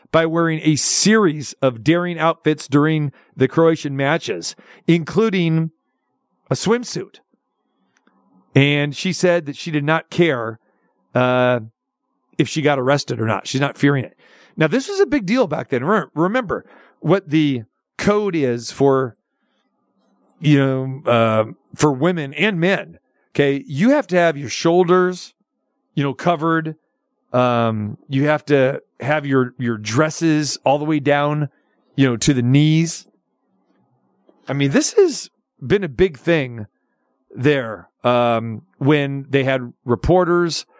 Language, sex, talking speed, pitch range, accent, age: English, male, 140 wpm, 135-170 Hz, American, 40-59